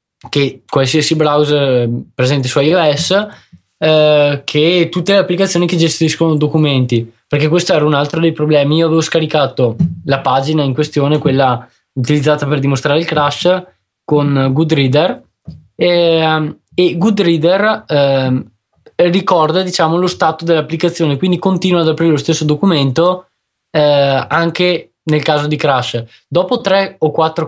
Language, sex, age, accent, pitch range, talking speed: Italian, male, 20-39, native, 135-165 Hz, 135 wpm